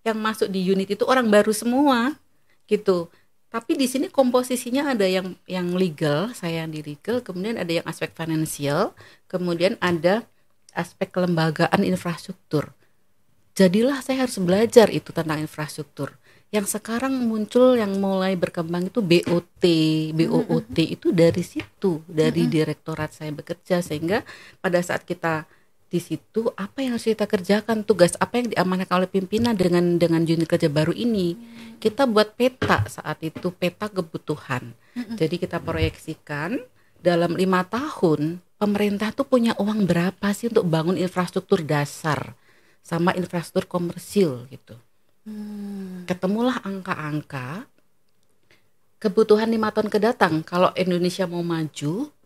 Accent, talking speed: native, 130 wpm